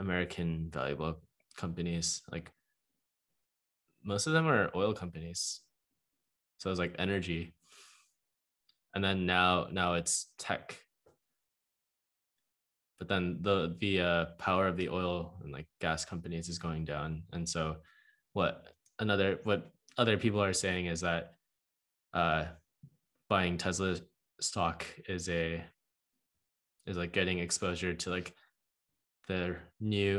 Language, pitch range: English, 85-100 Hz